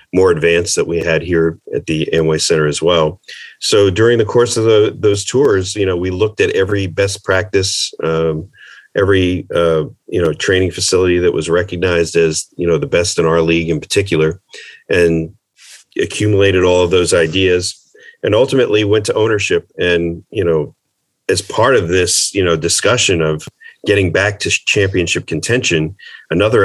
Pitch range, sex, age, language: 80-100 Hz, male, 40-59, English